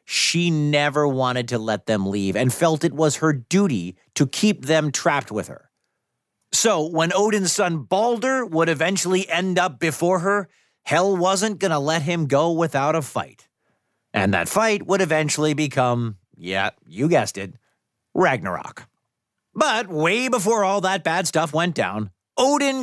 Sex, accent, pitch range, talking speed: male, American, 130-190 Hz, 160 wpm